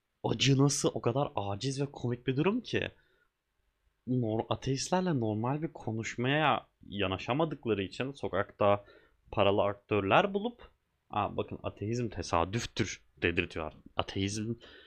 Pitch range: 100-145 Hz